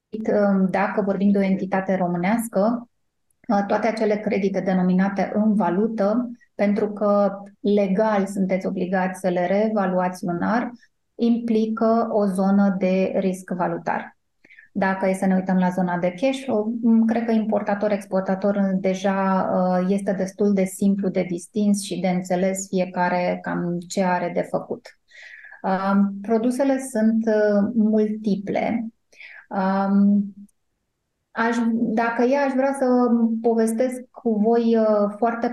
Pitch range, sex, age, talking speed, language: 190-215 Hz, female, 20-39, 115 wpm, Romanian